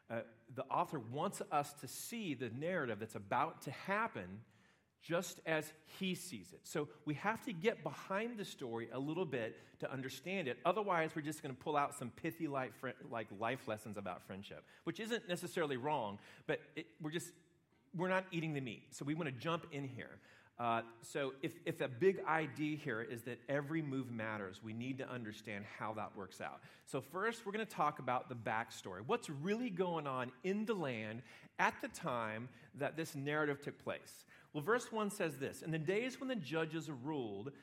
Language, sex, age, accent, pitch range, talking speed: English, male, 40-59, American, 120-170 Hz, 195 wpm